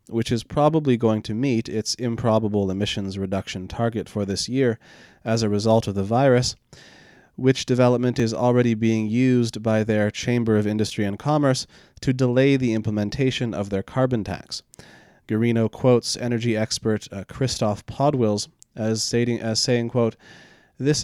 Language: English